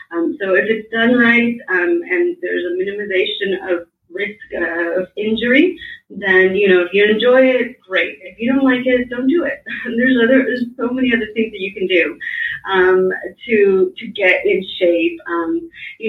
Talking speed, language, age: 200 wpm, English, 30-49